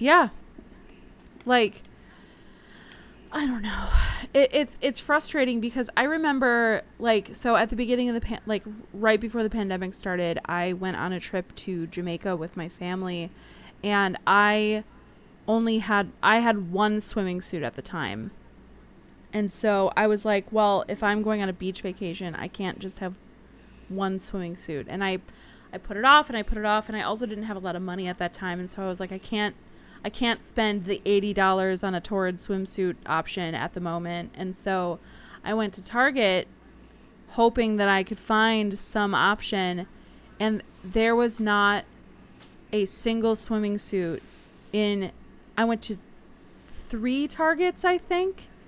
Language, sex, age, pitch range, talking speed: English, female, 20-39, 185-225 Hz, 170 wpm